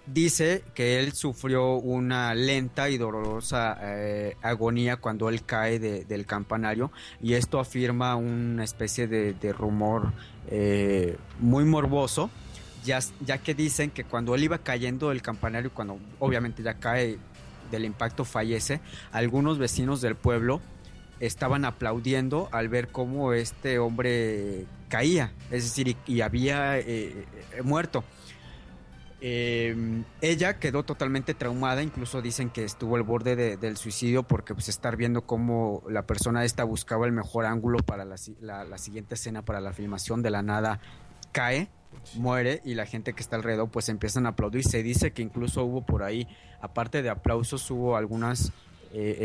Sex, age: male, 30-49